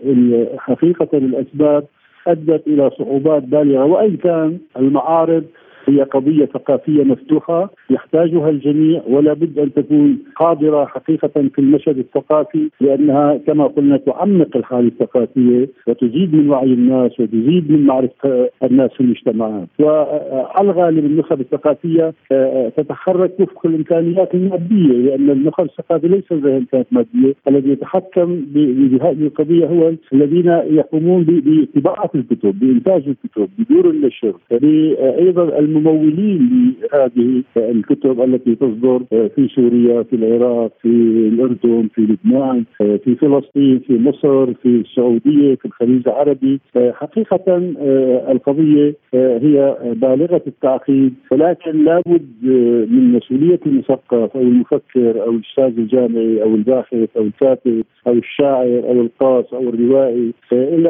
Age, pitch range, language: 50-69, 125-160 Hz, Arabic